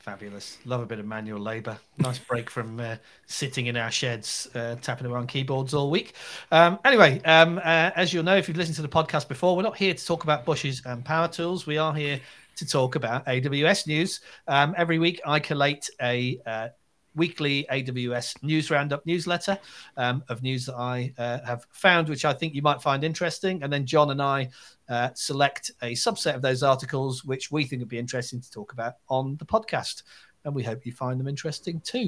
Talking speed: 210 wpm